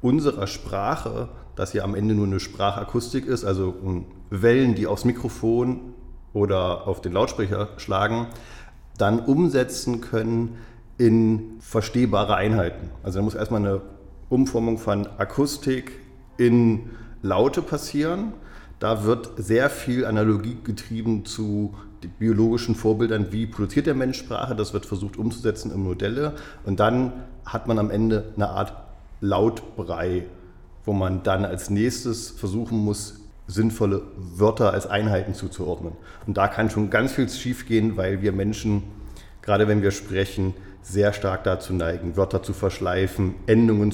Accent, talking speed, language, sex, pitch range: German, 140 wpm, German, male, 100-115 Hz